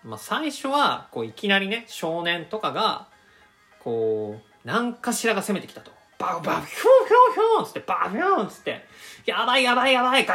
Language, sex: Japanese, male